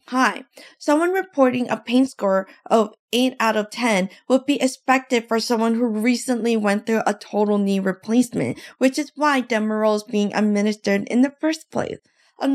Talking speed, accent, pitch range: 170 wpm, American, 220-290 Hz